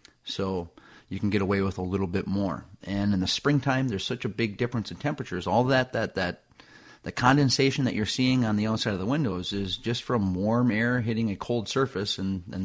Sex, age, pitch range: male, 30-49, 95-115 Hz